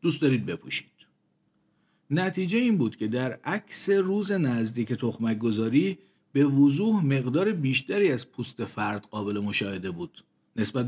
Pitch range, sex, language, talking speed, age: 115-155 Hz, male, Persian, 130 wpm, 50-69